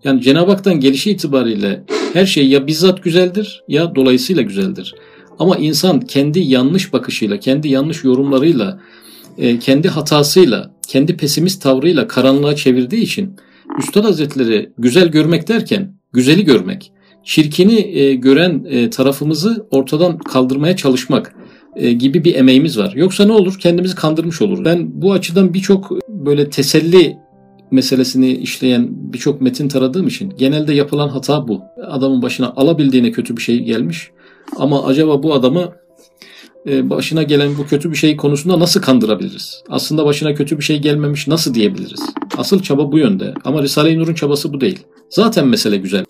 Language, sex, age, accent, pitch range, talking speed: Turkish, male, 50-69, native, 130-180 Hz, 140 wpm